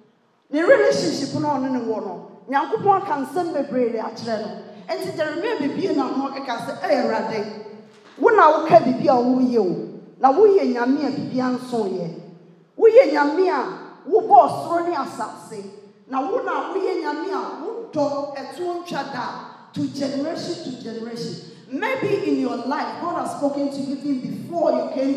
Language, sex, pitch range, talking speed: English, female, 230-315 Hz, 85 wpm